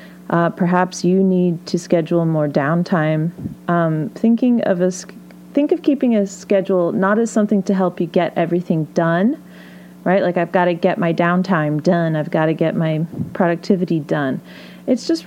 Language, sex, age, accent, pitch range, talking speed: English, female, 30-49, American, 165-205 Hz, 175 wpm